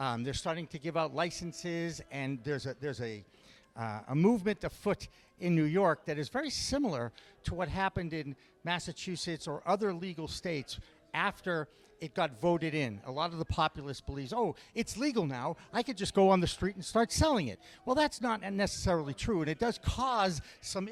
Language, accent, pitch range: English, American, 145-190 Hz